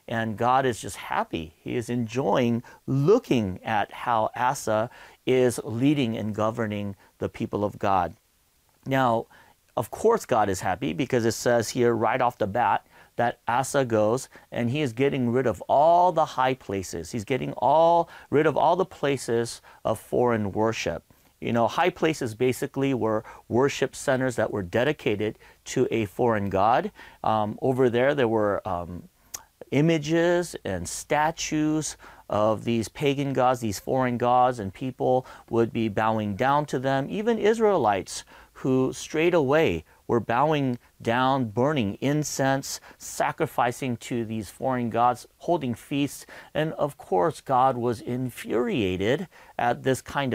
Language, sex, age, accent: English, male, 40-59, American